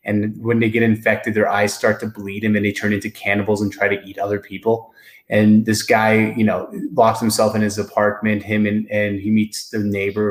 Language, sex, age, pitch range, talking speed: English, male, 20-39, 105-125 Hz, 225 wpm